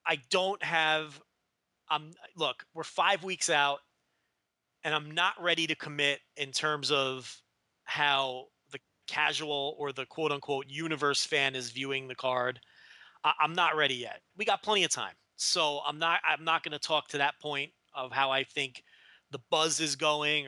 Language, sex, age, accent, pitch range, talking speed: English, male, 30-49, American, 130-155 Hz, 170 wpm